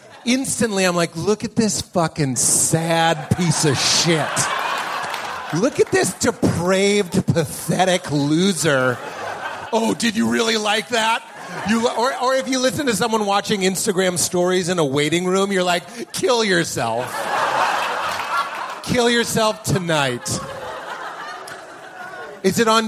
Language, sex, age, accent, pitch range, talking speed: English, male, 30-49, American, 155-215 Hz, 125 wpm